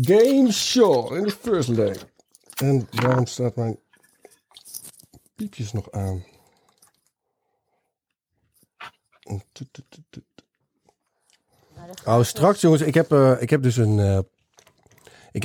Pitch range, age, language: 105-135 Hz, 50-69, Dutch